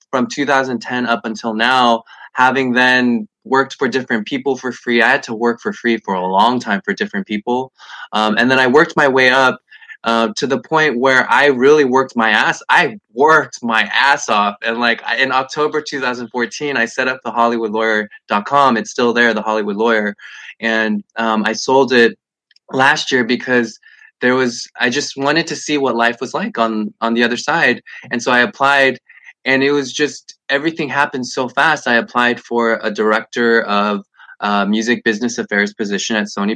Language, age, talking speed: English, 20-39, 190 wpm